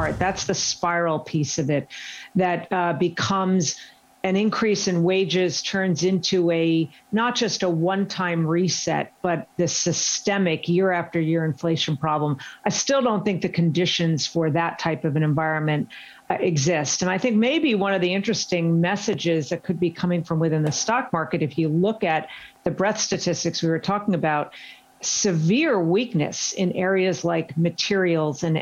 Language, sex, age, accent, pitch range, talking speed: English, female, 50-69, American, 160-190 Hz, 170 wpm